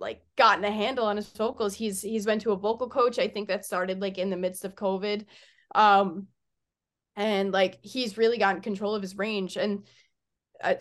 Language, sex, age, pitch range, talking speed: English, female, 10-29, 200-270 Hz, 200 wpm